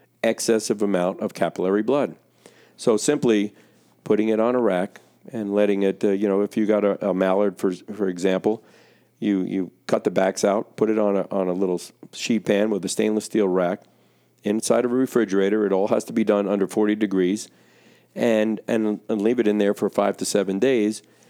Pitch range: 95-110 Hz